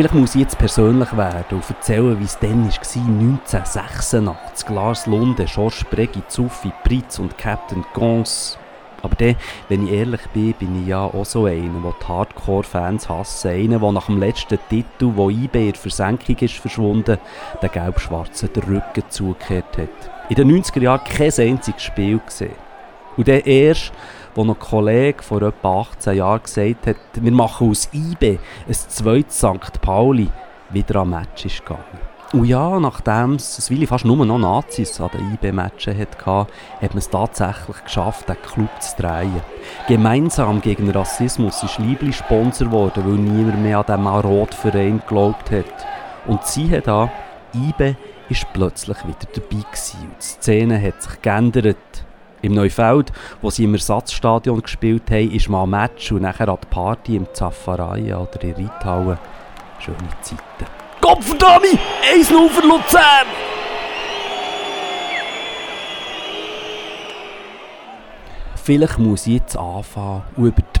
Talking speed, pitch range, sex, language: 150 wpm, 100-120 Hz, male, English